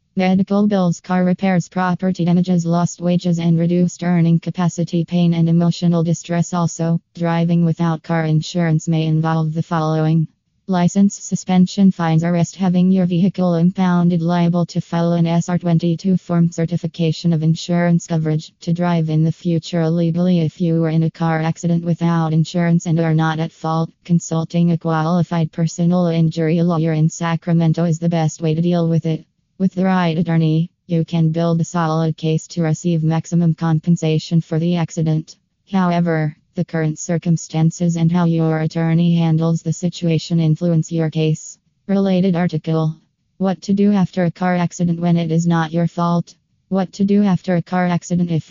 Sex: female